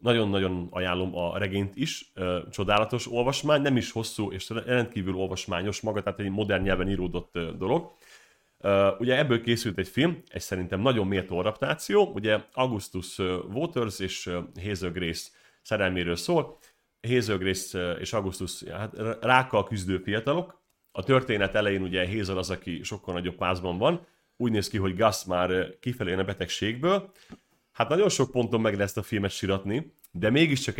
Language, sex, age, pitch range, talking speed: Hungarian, male, 30-49, 95-125 Hz, 150 wpm